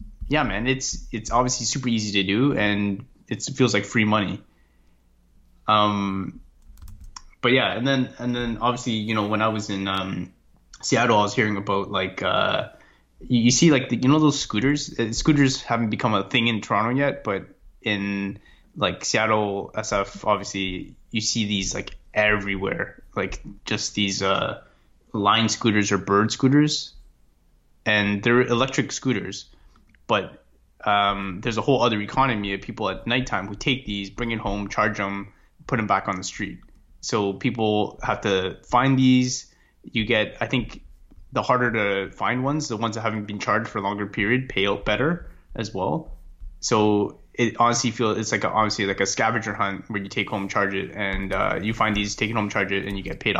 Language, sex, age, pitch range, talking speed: English, male, 20-39, 100-120 Hz, 185 wpm